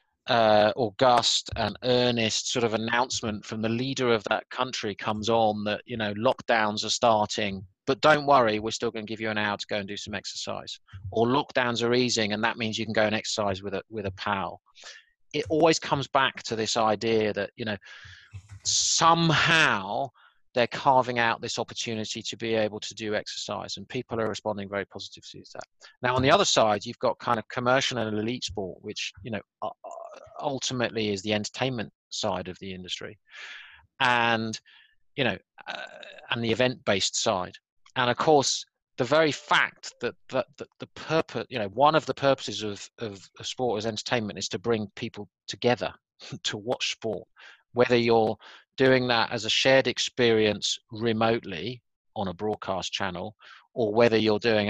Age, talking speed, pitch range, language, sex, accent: 30-49, 185 wpm, 105-125 Hz, English, male, British